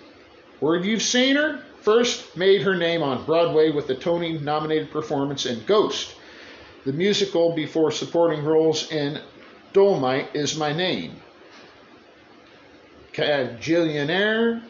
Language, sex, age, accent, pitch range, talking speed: English, male, 50-69, American, 150-200 Hz, 110 wpm